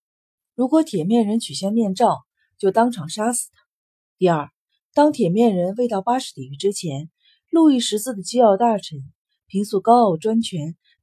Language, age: Chinese, 30-49